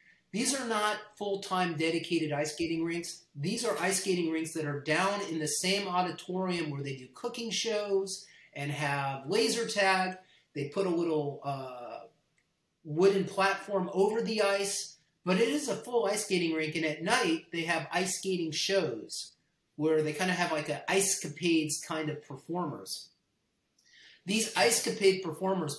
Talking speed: 165 wpm